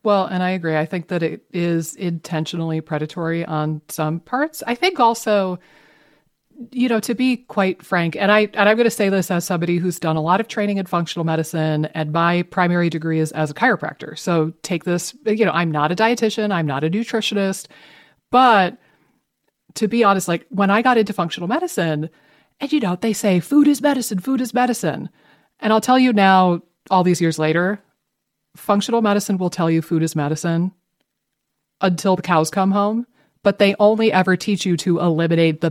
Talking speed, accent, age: 195 wpm, American, 40-59